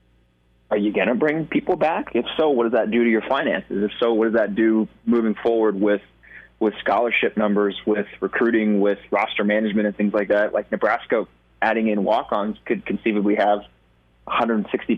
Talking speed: 185 wpm